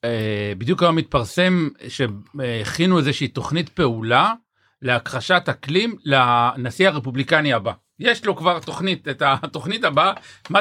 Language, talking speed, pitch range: Hebrew, 115 wpm, 130-165 Hz